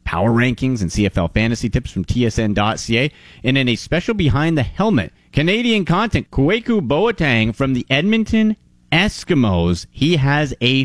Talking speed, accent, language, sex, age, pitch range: 145 wpm, American, English, male, 30-49, 105-150 Hz